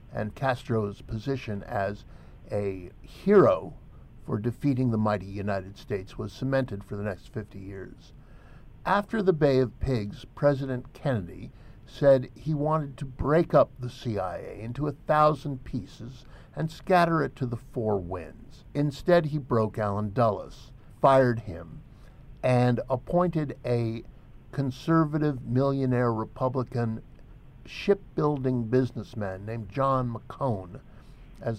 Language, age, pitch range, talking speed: English, 60-79, 110-140 Hz, 120 wpm